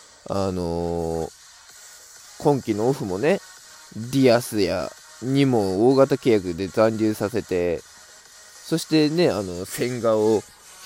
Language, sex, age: Japanese, male, 20-39